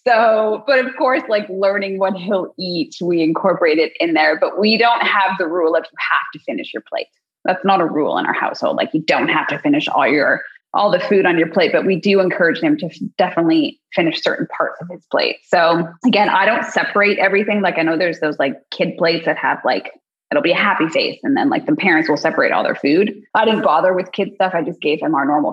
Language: English